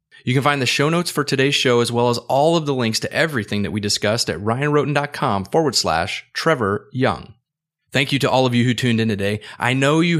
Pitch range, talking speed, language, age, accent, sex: 110-145 Hz, 235 wpm, English, 30-49, American, male